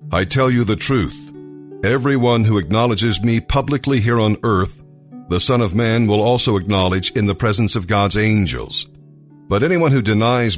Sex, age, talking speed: male, 50-69, 170 wpm